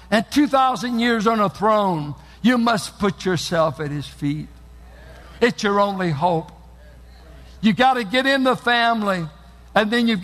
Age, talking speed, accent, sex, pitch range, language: 60-79, 160 wpm, American, male, 155-250 Hz, English